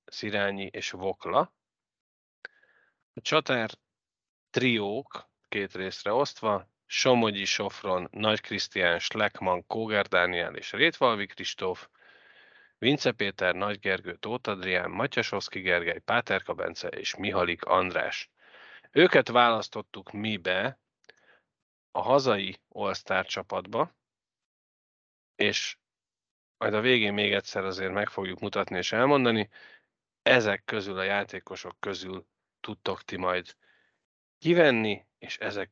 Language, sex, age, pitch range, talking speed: Hungarian, male, 30-49, 95-115 Hz, 100 wpm